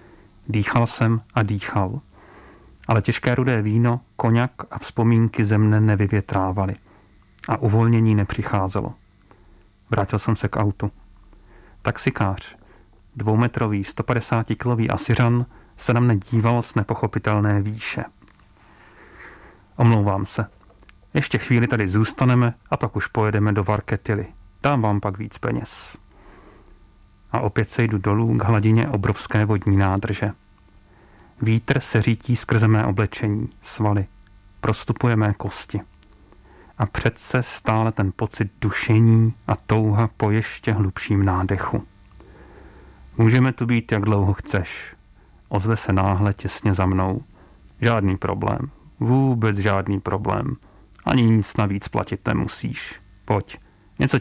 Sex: male